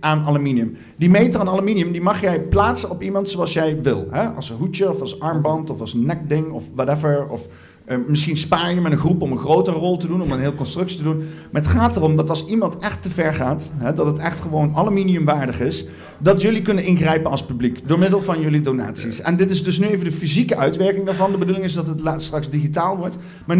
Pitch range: 125-175 Hz